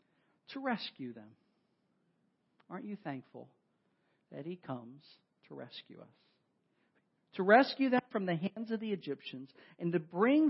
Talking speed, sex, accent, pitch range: 135 wpm, male, American, 150-195 Hz